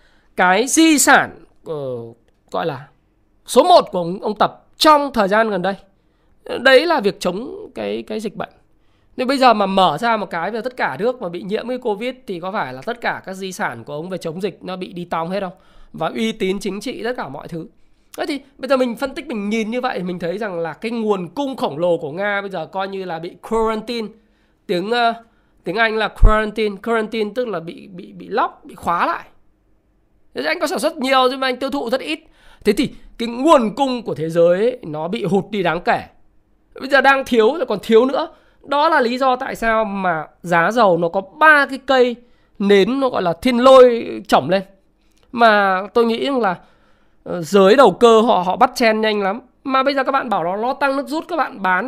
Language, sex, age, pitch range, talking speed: Vietnamese, male, 20-39, 185-255 Hz, 230 wpm